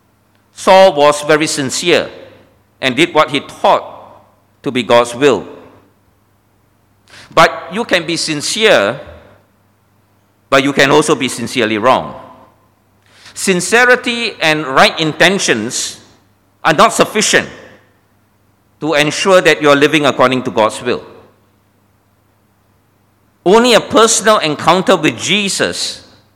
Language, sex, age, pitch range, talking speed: English, male, 50-69, 100-160 Hz, 110 wpm